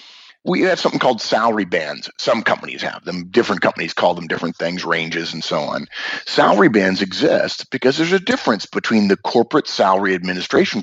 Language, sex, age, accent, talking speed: English, male, 30-49, American, 175 wpm